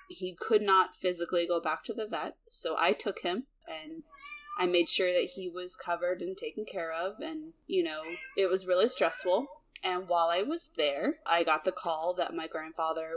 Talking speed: 200 wpm